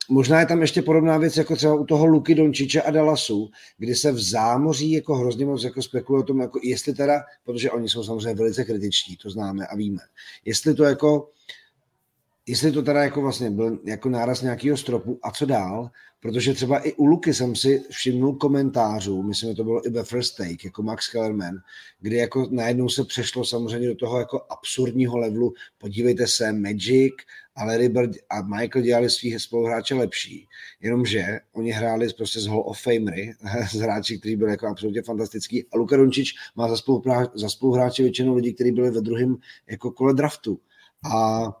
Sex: male